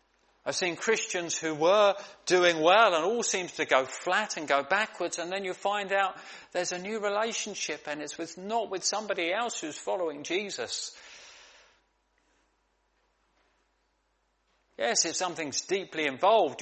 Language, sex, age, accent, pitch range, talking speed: English, male, 40-59, British, 130-185 Hz, 145 wpm